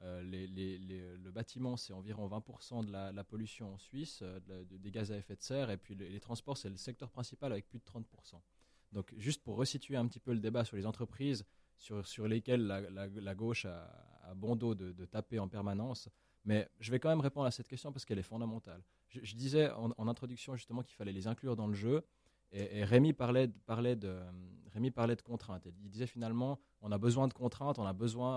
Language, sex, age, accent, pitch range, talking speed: French, male, 20-39, French, 100-125 Hz, 240 wpm